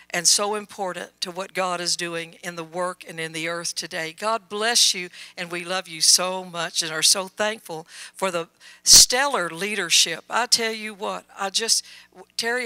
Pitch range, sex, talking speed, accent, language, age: 175-210 Hz, female, 190 wpm, American, English, 60-79